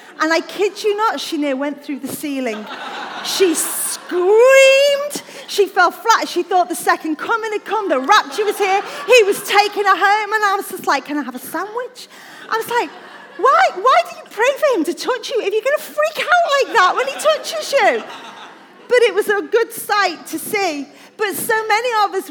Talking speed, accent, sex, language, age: 215 wpm, British, female, English, 30-49